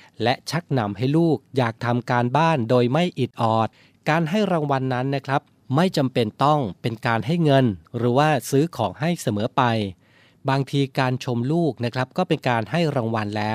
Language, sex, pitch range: Thai, male, 110-140 Hz